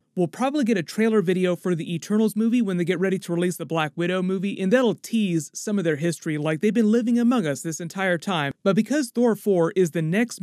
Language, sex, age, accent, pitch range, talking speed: English, male, 30-49, American, 160-210 Hz, 255 wpm